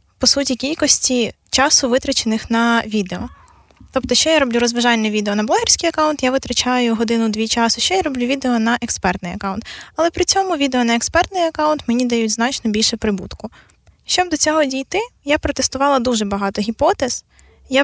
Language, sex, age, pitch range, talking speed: Ukrainian, female, 20-39, 230-280 Hz, 165 wpm